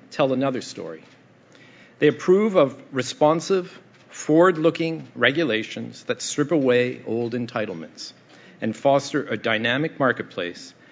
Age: 50-69